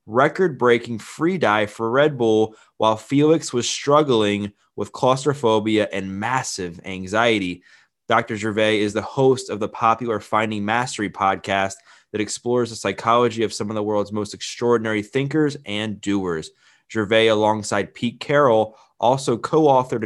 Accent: American